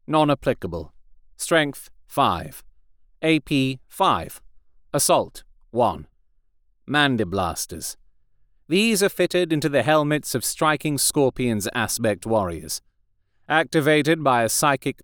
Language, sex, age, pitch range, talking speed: English, male, 40-59, 115-165 Hz, 95 wpm